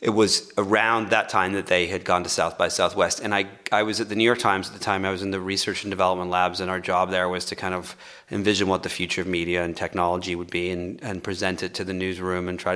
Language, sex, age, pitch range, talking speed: English, male, 30-49, 95-125 Hz, 280 wpm